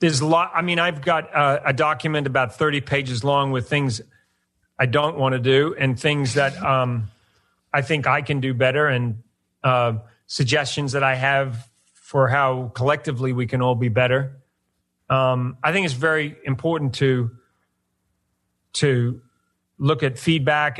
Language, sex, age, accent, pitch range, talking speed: English, male, 40-59, American, 125-155 Hz, 160 wpm